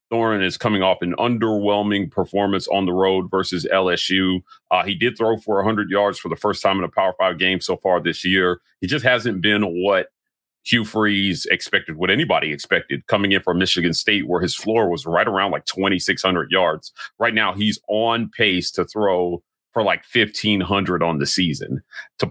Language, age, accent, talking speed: English, 40-59, American, 195 wpm